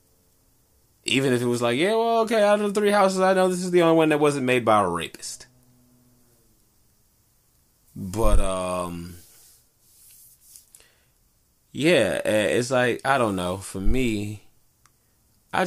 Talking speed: 140 wpm